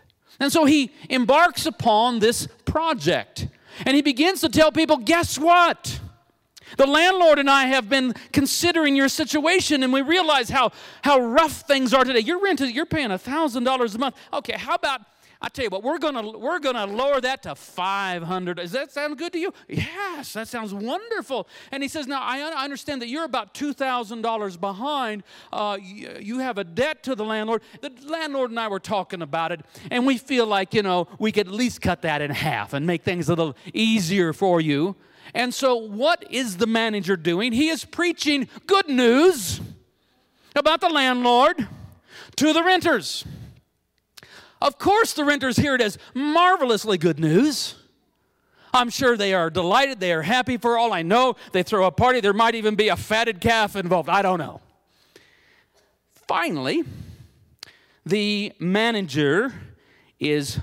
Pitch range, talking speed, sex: 195-290 Hz, 170 wpm, male